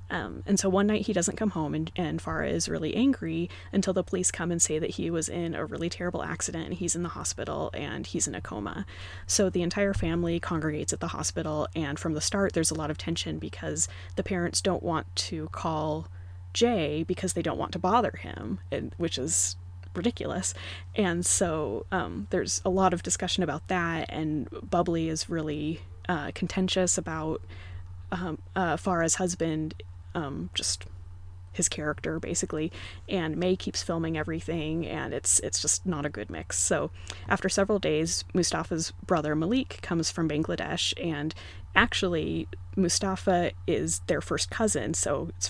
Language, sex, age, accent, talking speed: English, female, 10-29, American, 175 wpm